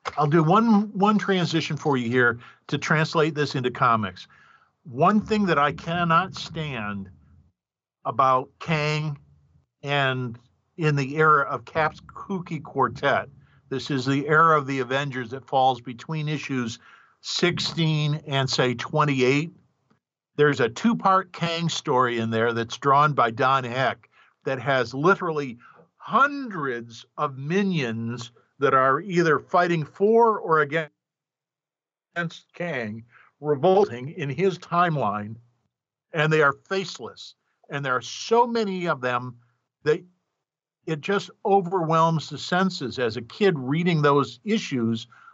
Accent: American